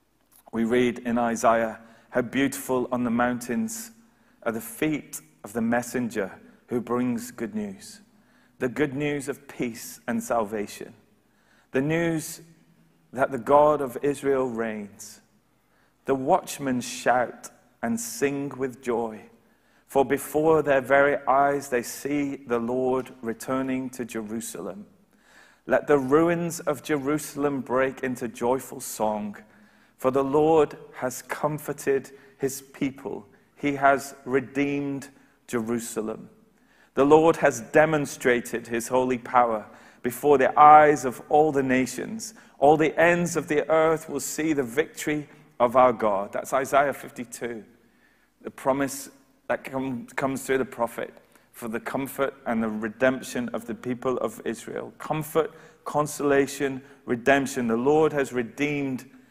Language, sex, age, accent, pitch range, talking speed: English, male, 30-49, British, 120-150 Hz, 130 wpm